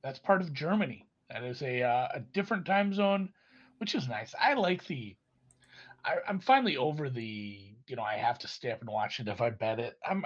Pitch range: 125-195 Hz